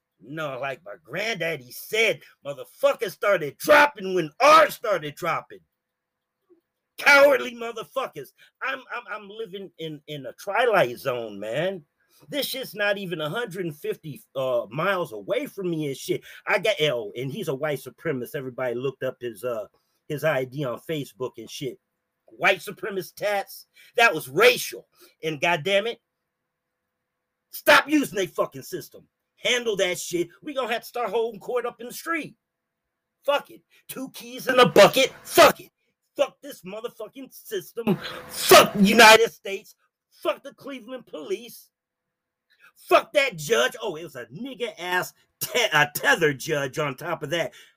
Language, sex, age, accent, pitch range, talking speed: English, male, 40-59, American, 150-245 Hz, 150 wpm